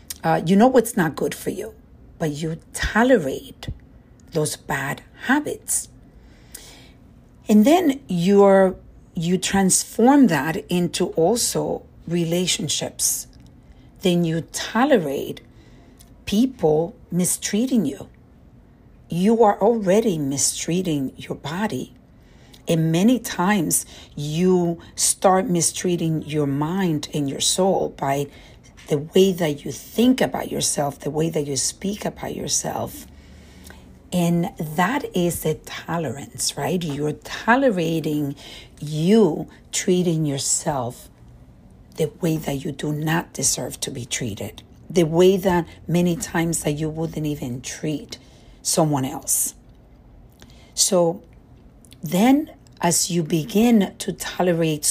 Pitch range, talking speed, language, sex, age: 150-190 Hz, 110 wpm, English, female, 50-69